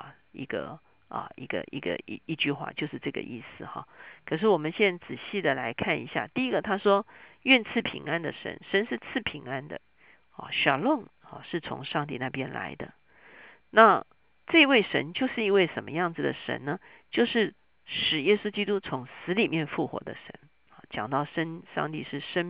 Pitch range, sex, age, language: 150-205 Hz, female, 50-69, Chinese